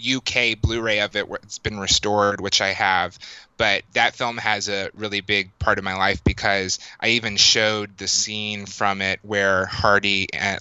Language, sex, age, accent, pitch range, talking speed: English, male, 20-39, American, 95-105 Hz, 185 wpm